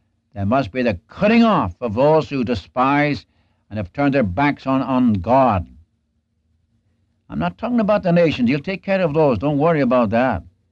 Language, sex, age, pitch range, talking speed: English, male, 60-79, 105-140 Hz, 185 wpm